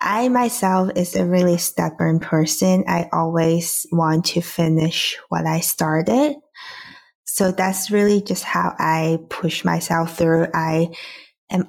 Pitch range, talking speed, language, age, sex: 165-210 Hz, 135 wpm, English, 20-39, female